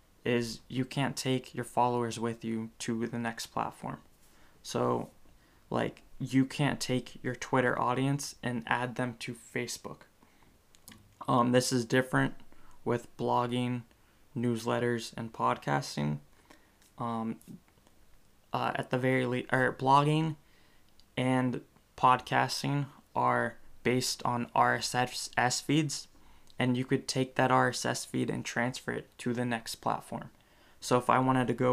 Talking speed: 130 wpm